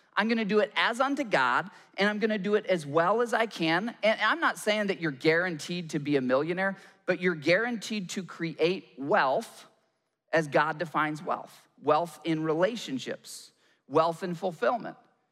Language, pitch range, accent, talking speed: English, 150-190 Hz, American, 180 wpm